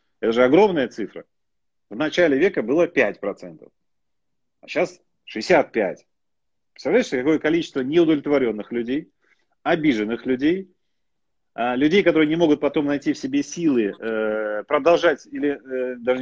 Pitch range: 120-160 Hz